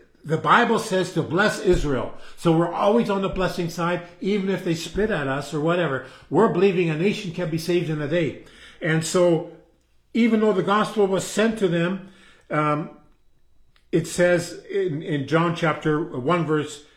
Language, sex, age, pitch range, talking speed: English, male, 50-69, 165-210 Hz, 175 wpm